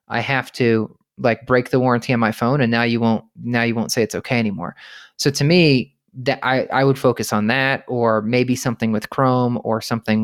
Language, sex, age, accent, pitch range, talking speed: English, male, 20-39, American, 115-130 Hz, 225 wpm